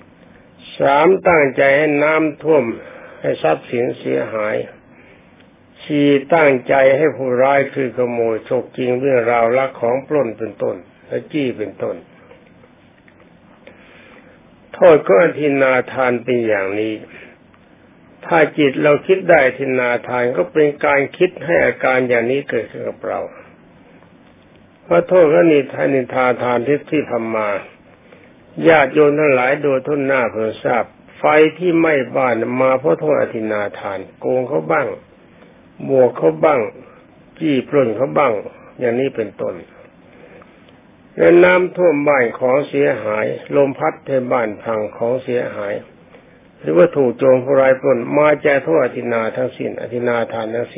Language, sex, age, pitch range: Thai, male, 60-79, 120-150 Hz